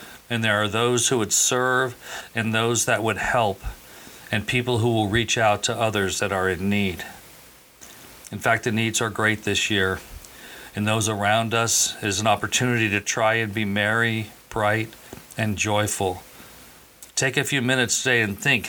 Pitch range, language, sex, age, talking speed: 105-120 Hz, English, male, 50-69, 175 wpm